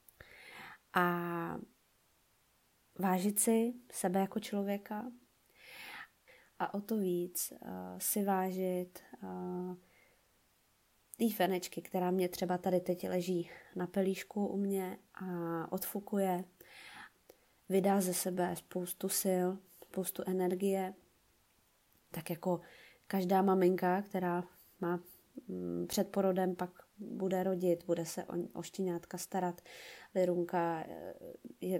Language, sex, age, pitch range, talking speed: Czech, female, 20-39, 175-195 Hz, 95 wpm